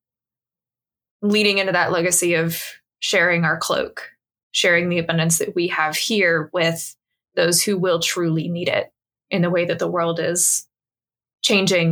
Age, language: 20-39, English